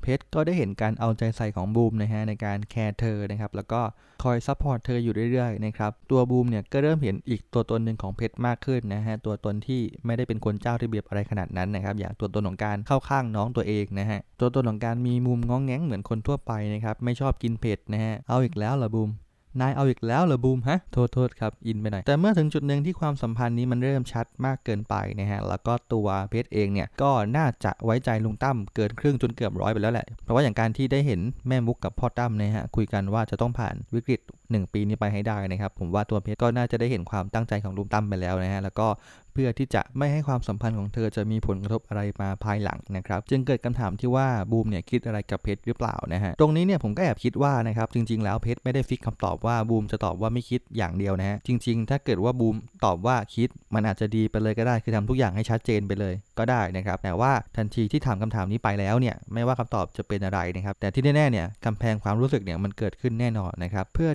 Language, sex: English, male